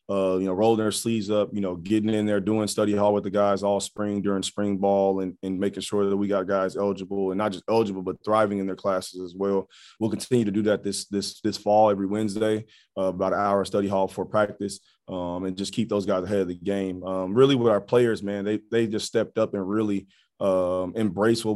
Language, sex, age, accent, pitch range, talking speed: English, male, 30-49, American, 95-105 Hz, 245 wpm